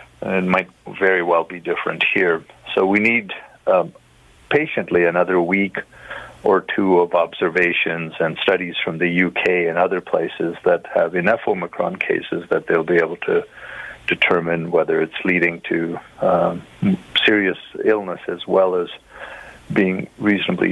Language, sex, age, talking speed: English, male, 50-69, 140 wpm